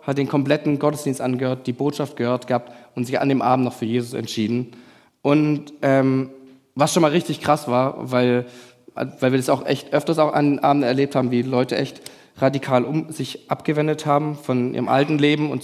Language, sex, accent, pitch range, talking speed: German, male, German, 125-150 Hz, 200 wpm